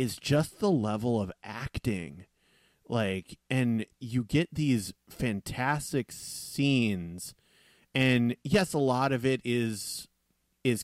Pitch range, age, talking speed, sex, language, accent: 95-125 Hz, 30-49, 115 wpm, male, English, American